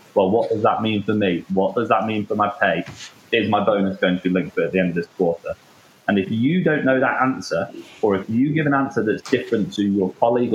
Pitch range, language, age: 95-110 Hz, English, 20-39